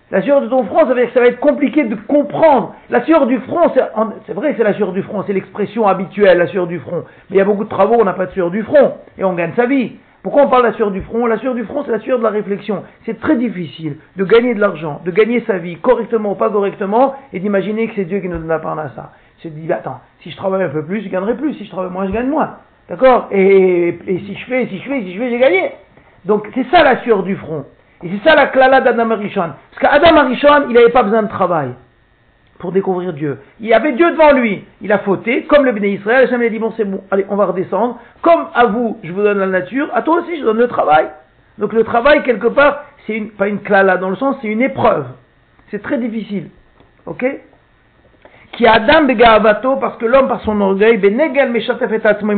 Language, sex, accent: French, male, French